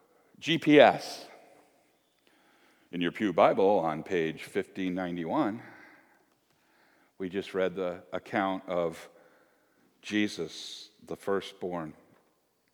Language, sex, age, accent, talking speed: English, male, 50-69, American, 80 wpm